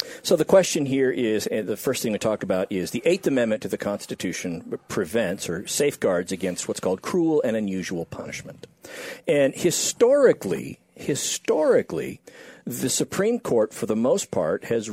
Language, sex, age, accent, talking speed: English, male, 50-69, American, 155 wpm